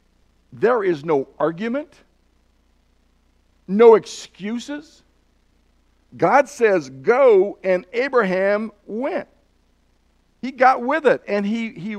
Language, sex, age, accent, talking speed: English, male, 60-79, American, 95 wpm